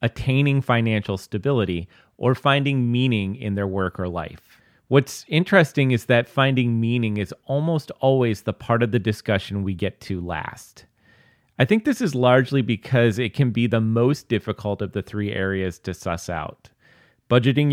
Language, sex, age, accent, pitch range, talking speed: English, male, 30-49, American, 95-120 Hz, 165 wpm